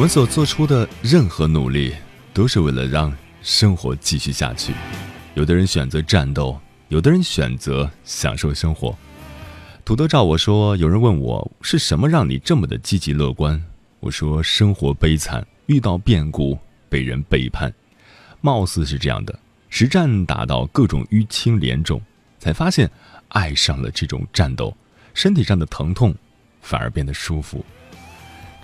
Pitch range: 70-110 Hz